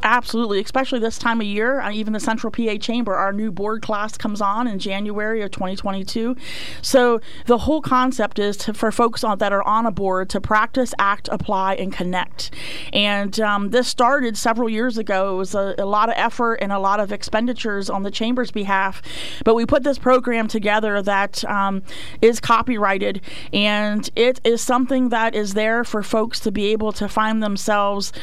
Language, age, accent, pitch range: English, 30-49, American, 205-240 Hz